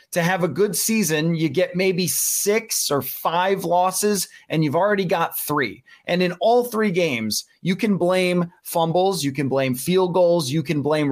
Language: English